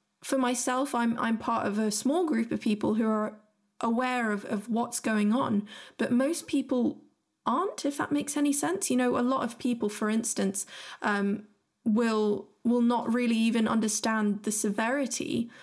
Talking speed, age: 175 wpm, 20-39